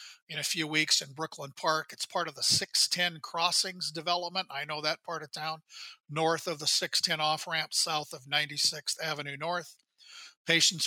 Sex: male